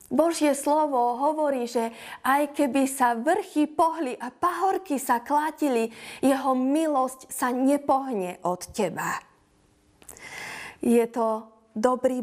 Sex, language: female, Slovak